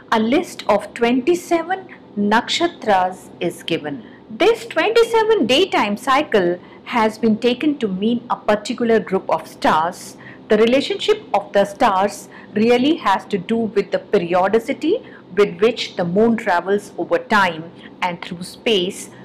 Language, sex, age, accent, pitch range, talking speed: English, female, 50-69, Indian, 180-250 Hz, 135 wpm